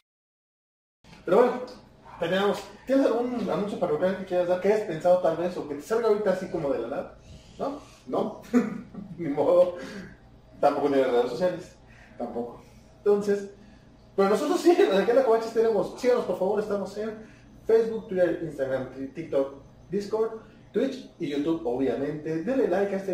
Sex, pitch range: male, 140-200 Hz